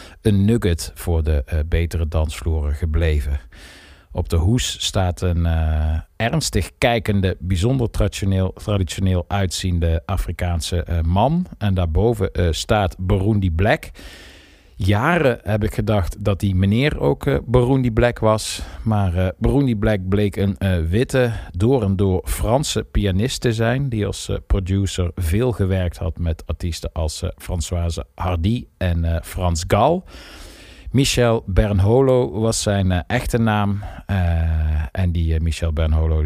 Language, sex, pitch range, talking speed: Dutch, male, 85-105 Hz, 140 wpm